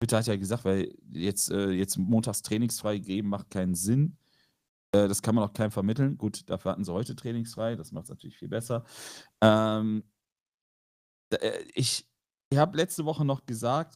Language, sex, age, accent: German, male, 40-59, German